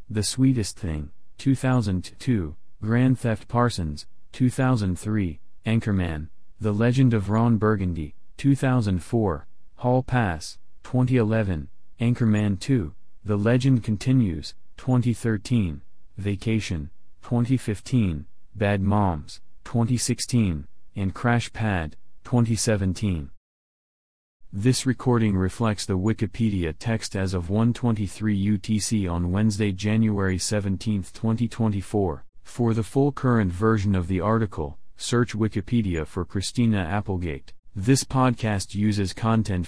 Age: 30-49